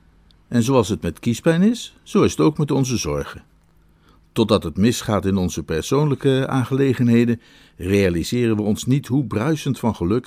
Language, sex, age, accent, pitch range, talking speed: Dutch, male, 50-69, Dutch, 85-115 Hz, 165 wpm